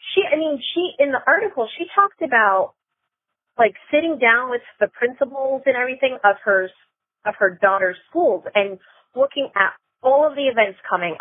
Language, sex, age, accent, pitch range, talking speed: English, female, 30-49, American, 195-280 Hz, 170 wpm